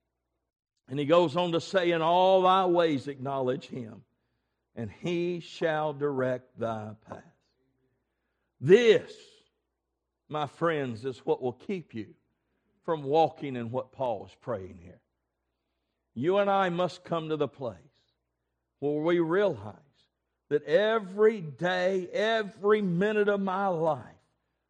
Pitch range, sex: 135-185 Hz, male